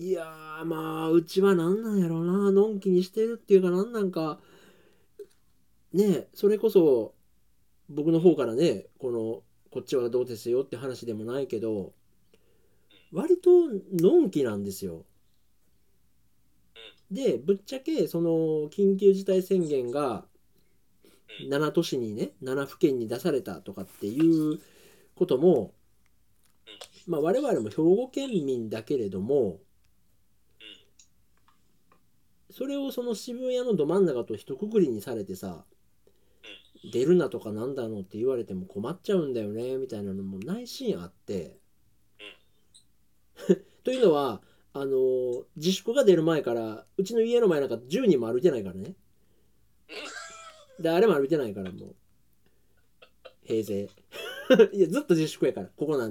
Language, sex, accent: Japanese, male, native